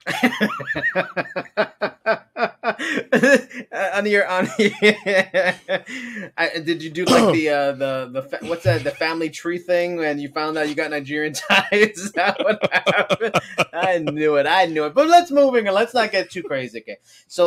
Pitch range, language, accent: 150-195 Hz, English, American